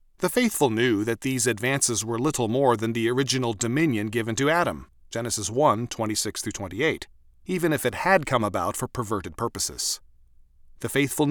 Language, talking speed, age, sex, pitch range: English, 160 wpm, 40-59, male, 110-155 Hz